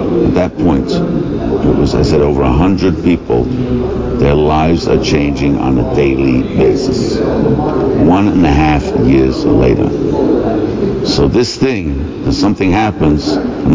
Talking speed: 140 wpm